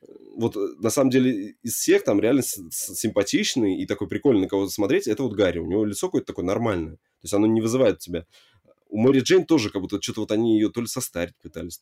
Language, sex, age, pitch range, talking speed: Russian, male, 20-39, 95-135 Hz, 225 wpm